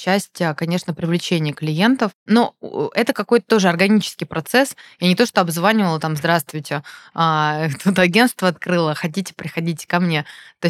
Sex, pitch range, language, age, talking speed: female, 160-190 Hz, Russian, 20-39, 145 wpm